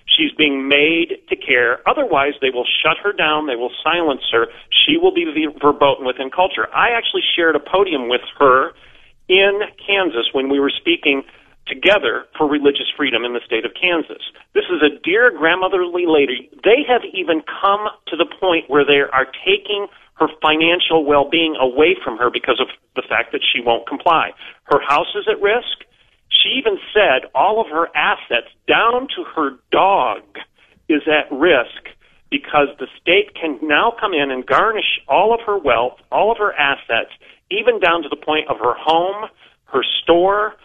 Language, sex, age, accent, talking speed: English, male, 40-59, American, 175 wpm